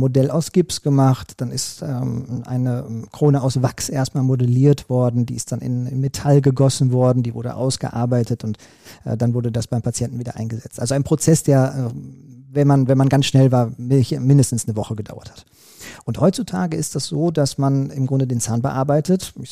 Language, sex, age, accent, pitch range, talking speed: German, male, 40-59, German, 120-145 Hz, 195 wpm